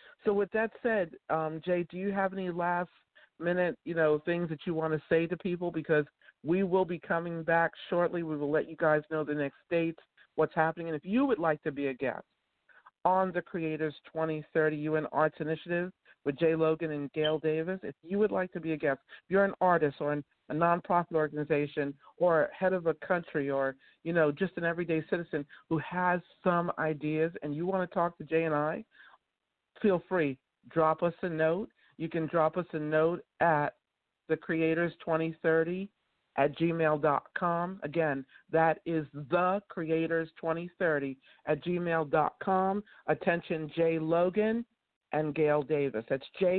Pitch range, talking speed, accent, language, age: 155-180 Hz, 170 wpm, American, English, 50-69